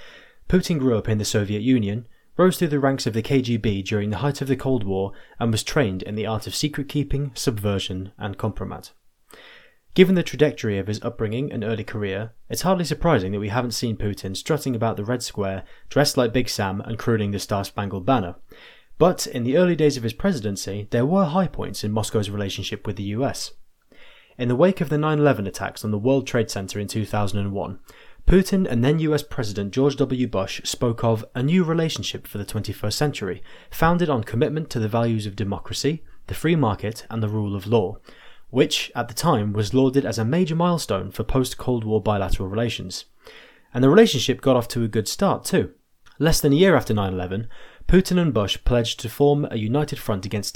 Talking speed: 205 wpm